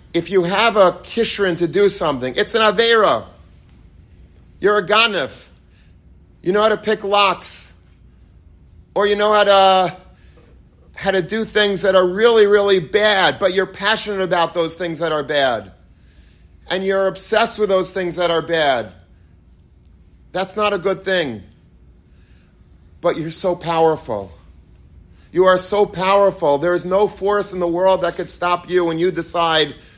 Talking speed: 160 wpm